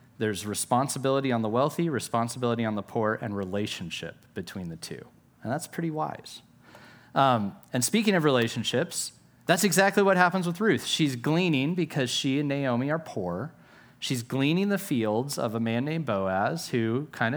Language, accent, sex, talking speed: English, American, male, 165 wpm